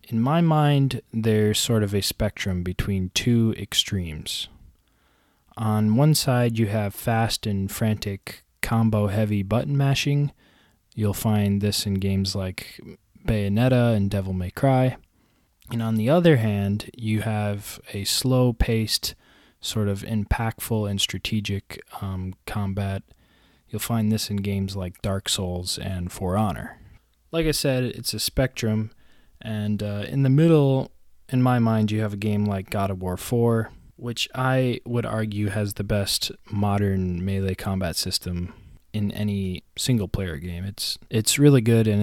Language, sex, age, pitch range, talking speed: English, male, 20-39, 95-115 Hz, 145 wpm